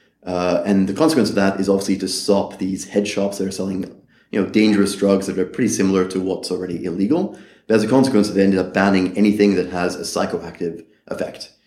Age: 30-49